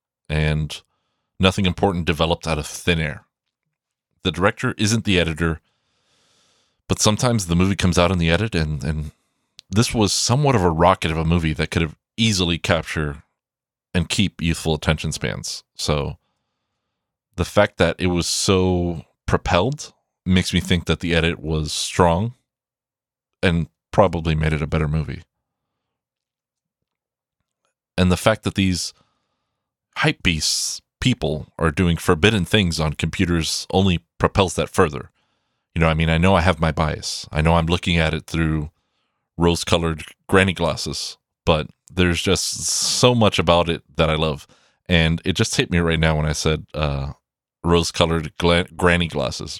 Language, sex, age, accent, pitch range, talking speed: English, male, 30-49, American, 80-95 Hz, 155 wpm